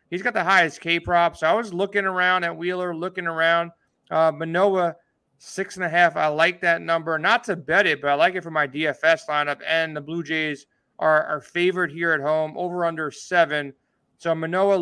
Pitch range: 155-180 Hz